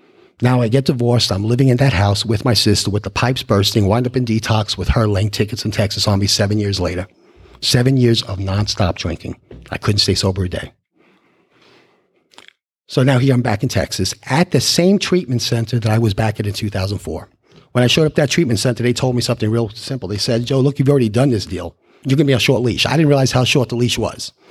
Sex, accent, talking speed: male, American, 240 wpm